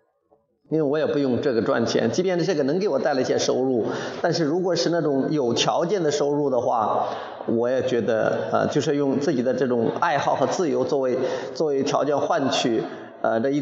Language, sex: Chinese, male